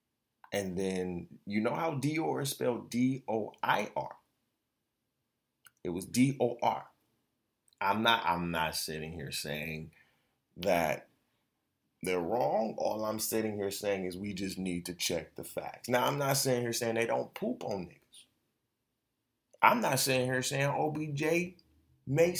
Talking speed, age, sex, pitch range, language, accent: 135 wpm, 30-49, male, 95-155 Hz, English, American